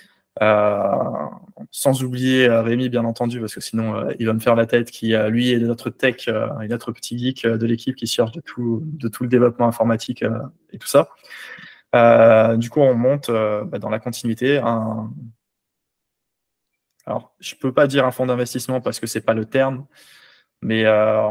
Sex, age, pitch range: male, 20-39, 115-125 Hz